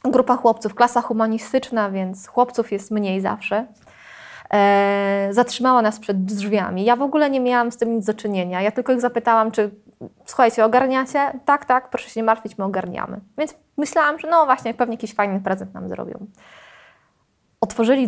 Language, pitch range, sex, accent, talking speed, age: Polish, 200-240 Hz, female, native, 165 wpm, 20-39